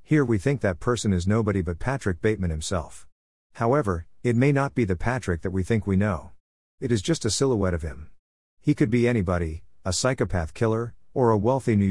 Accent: American